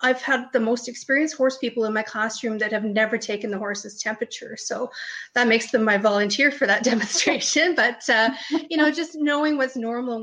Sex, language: female, English